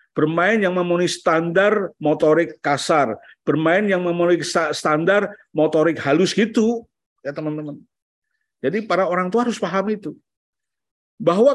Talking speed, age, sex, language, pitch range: 120 wpm, 50-69, male, Indonesian, 145-200 Hz